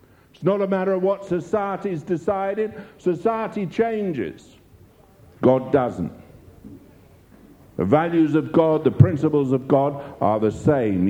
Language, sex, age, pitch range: English, male, 60-79, 125-185 Hz